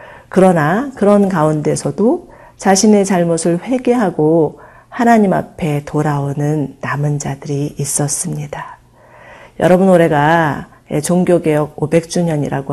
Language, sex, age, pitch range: Korean, female, 40-59, 145-180 Hz